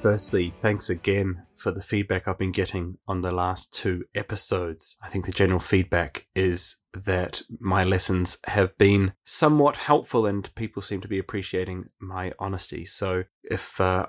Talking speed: 160 wpm